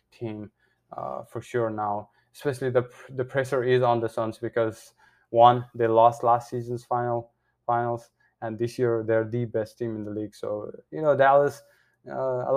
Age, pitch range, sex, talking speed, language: 20-39, 115-125 Hz, male, 170 wpm, English